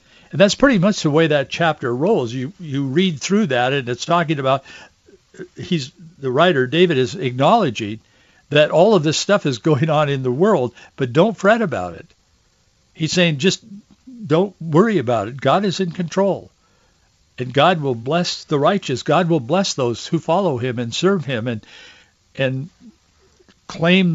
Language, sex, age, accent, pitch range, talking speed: English, male, 60-79, American, 125-175 Hz, 175 wpm